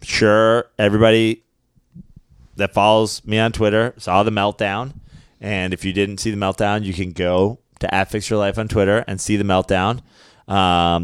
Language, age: English, 30-49